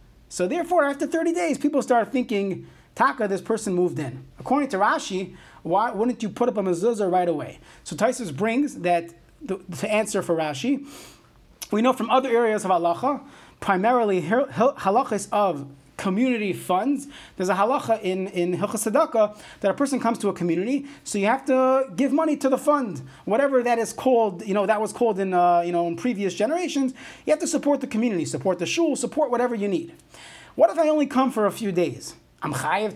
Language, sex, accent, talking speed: English, male, American, 195 wpm